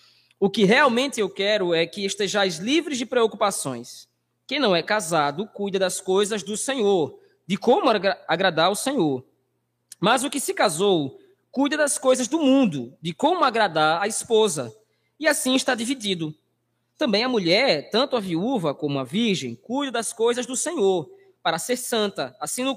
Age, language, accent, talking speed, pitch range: 20-39, Portuguese, Brazilian, 165 wpm, 180-265 Hz